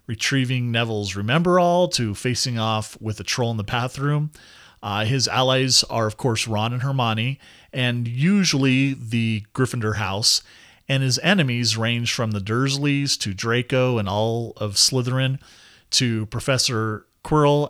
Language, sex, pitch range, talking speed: English, male, 110-140 Hz, 140 wpm